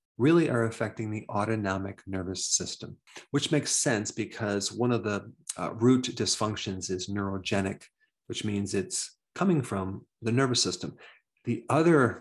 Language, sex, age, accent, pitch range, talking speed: English, male, 40-59, American, 100-125 Hz, 145 wpm